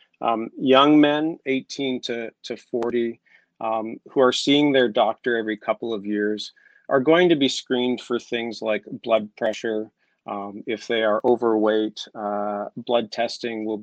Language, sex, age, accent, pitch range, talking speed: English, male, 40-59, American, 110-130 Hz, 155 wpm